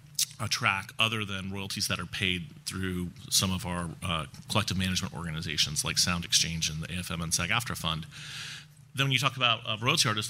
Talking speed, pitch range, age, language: 185 wpm, 95-115 Hz, 30-49, English